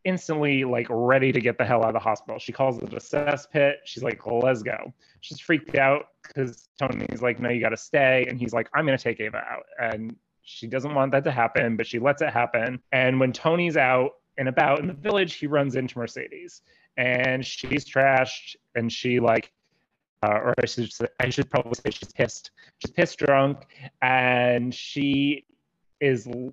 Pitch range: 115-135 Hz